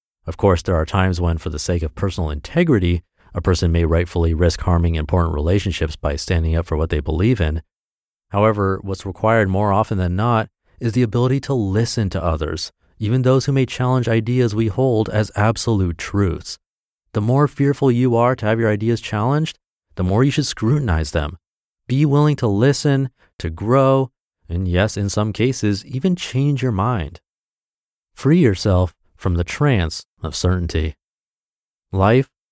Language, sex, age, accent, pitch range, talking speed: English, male, 30-49, American, 85-125 Hz, 170 wpm